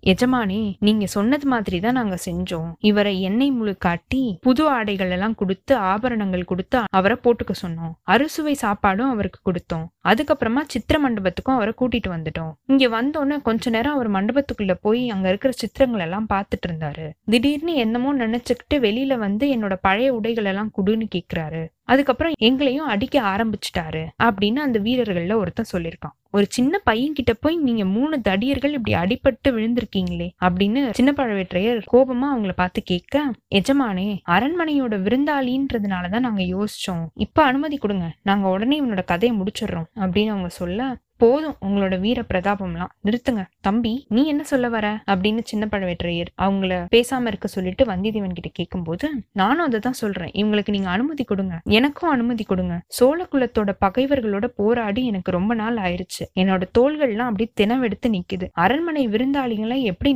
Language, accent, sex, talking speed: Tamil, native, female, 145 wpm